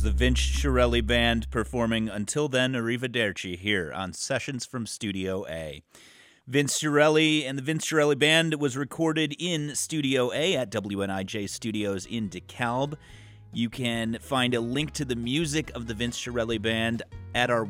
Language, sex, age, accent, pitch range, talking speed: English, male, 30-49, American, 110-145 Hz, 155 wpm